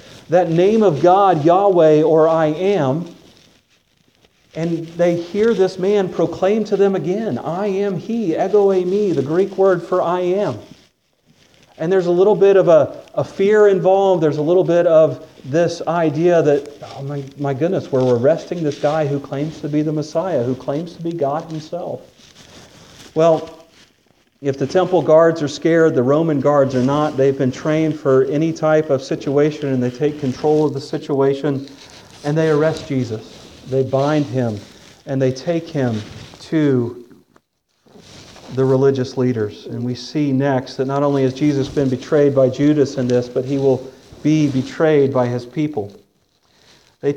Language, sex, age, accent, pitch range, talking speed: English, male, 40-59, American, 135-170 Hz, 170 wpm